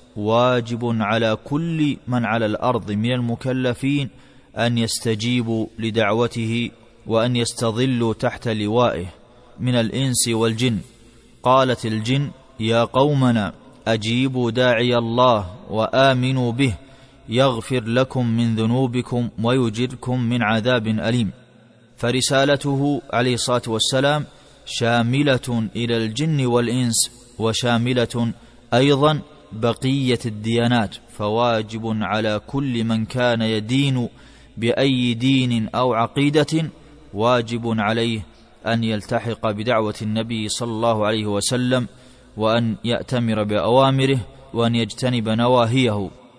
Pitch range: 115-125 Hz